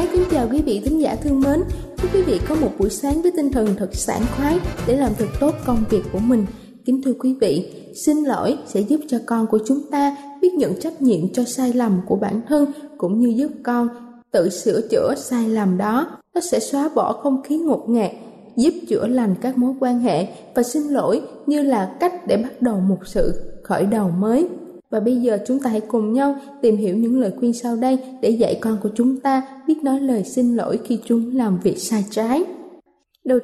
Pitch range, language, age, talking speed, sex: 220-285 Hz, Vietnamese, 20-39, 225 wpm, female